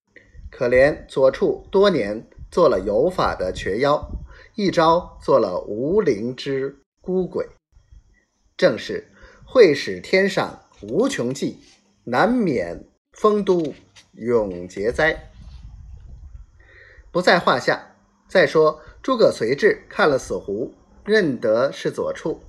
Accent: native